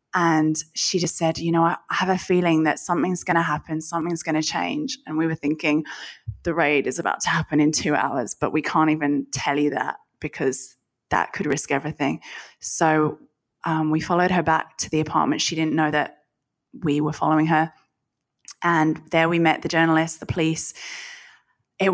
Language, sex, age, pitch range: English, female, 20-39, 155-180 Hz